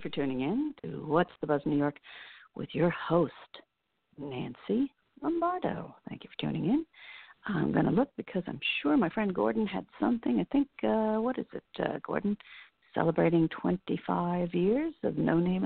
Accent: American